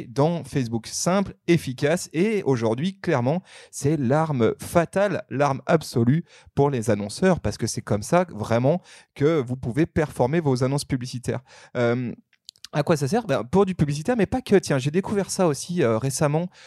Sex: male